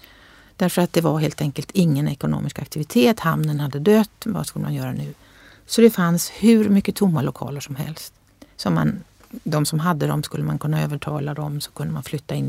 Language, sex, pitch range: Swedish, female, 145-185 Hz